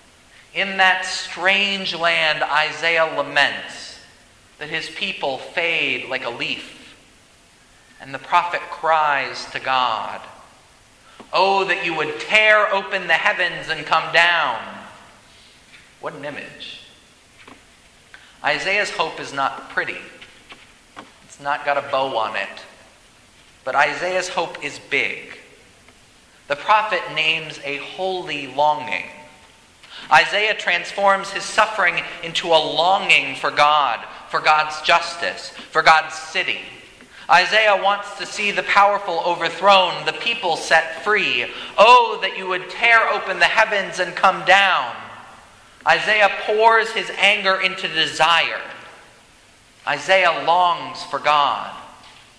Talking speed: 120 wpm